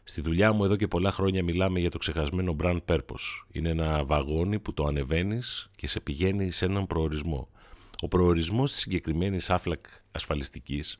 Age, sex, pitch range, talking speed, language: 40-59, male, 80-100 Hz, 170 wpm, Greek